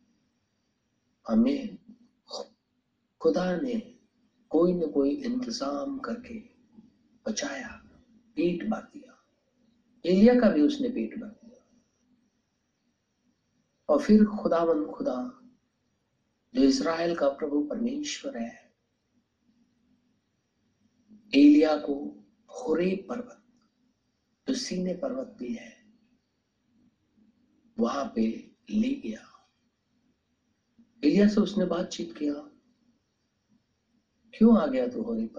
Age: 60-79